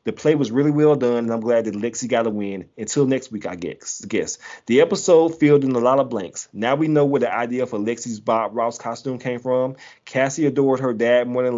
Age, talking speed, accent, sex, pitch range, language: 30-49, 240 wpm, American, male, 110-135 Hz, English